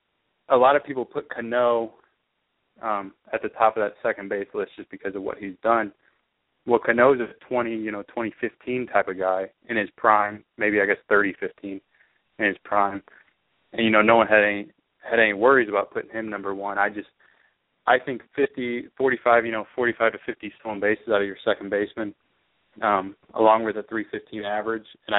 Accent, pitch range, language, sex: American, 100-115 Hz, English, male